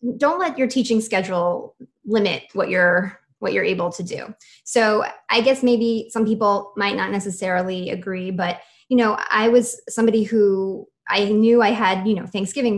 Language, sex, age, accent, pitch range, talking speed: English, female, 20-39, American, 195-240 Hz, 175 wpm